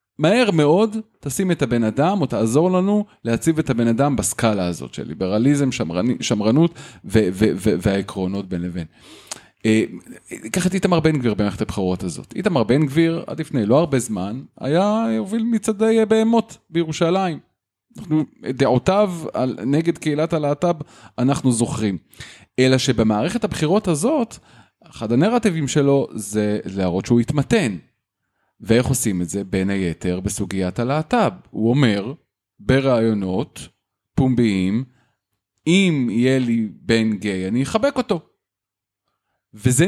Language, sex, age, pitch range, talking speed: Hebrew, male, 30-49, 115-180 Hz, 130 wpm